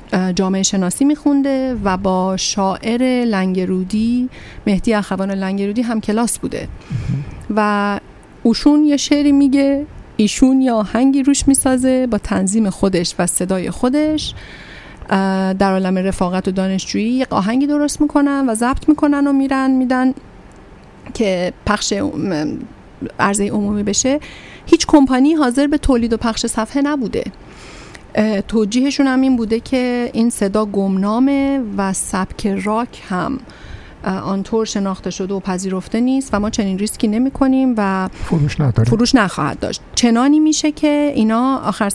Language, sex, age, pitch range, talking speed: Persian, female, 30-49, 195-260 Hz, 130 wpm